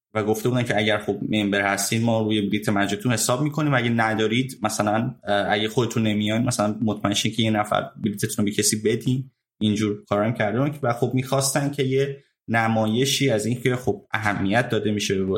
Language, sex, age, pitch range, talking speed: Persian, male, 20-39, 100-125 Hz, 180 wpm